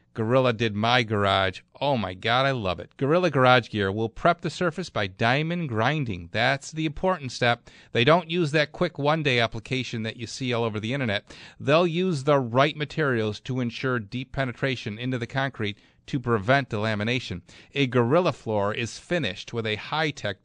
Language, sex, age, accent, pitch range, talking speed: English, male, 40-59, American, 115-160 Hz, 180 wpm